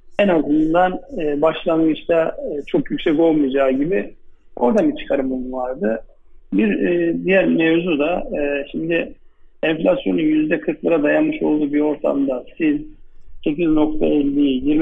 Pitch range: 140-165 Hz